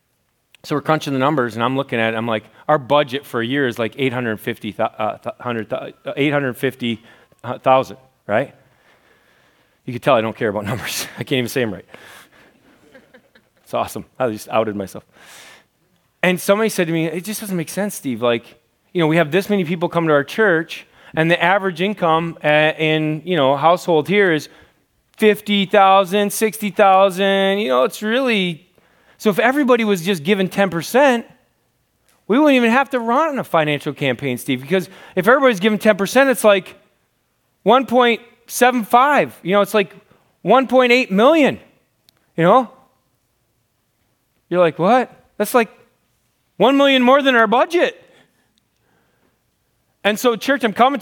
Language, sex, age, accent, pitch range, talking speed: English, male, 30-49, American, 140-220 Hz, 155 wpm